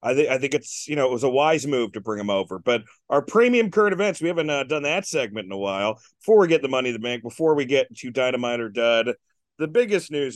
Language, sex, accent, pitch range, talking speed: English, male, American, 125-165 Hz, 270 wpm